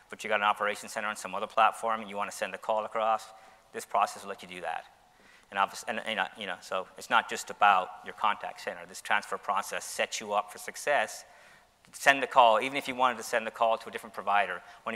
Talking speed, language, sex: 260 wpm, English, male